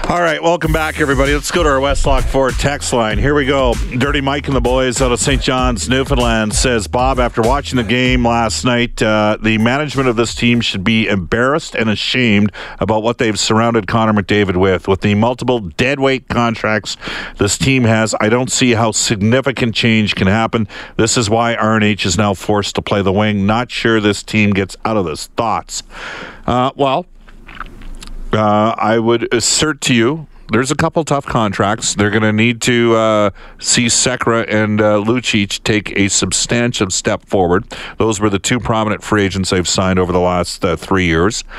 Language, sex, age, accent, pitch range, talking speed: English, male, 50-69, American, 95-120 Hz, 190 wpm